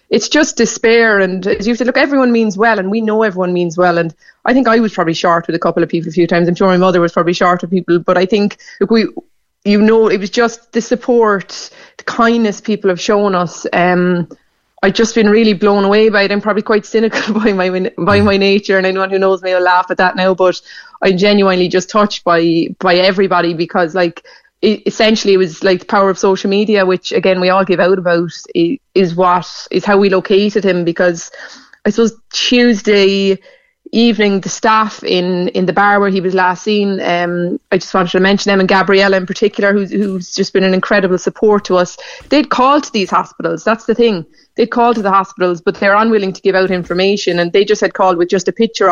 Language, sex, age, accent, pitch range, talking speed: English, female, 20-39, Irish, 180-215 Hz, 225 wpm